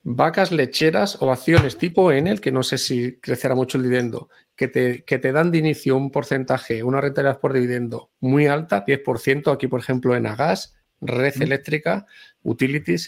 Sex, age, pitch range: male, 40-59, 125-155 Hz